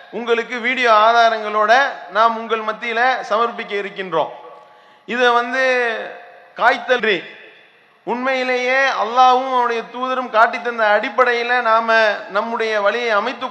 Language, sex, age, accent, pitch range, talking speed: English, male, 30-49, Indian, 220-255 Hz, 100 wpm